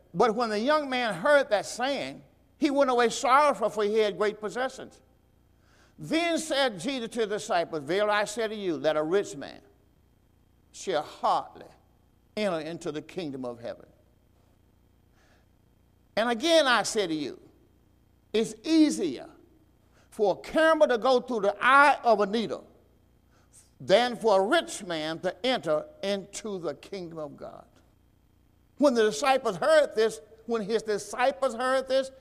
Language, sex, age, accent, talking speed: English, male, 60-79, American, 150 wpm